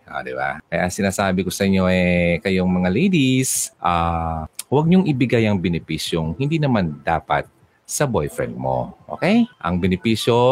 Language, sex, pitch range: Filipino, male, 90-130 Hz